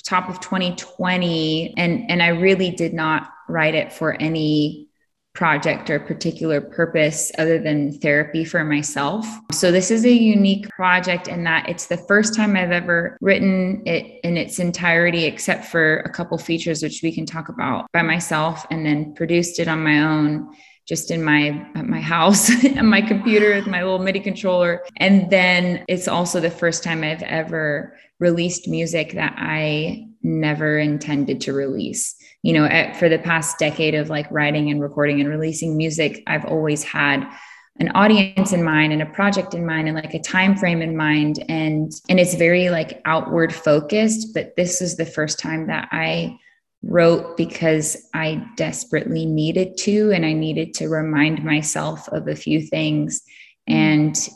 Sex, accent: female, American